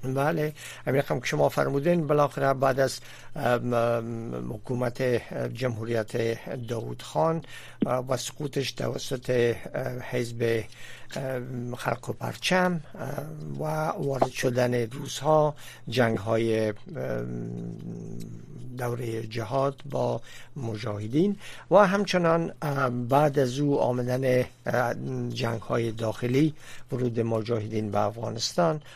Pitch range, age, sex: 115-135 Hz, 60-79, male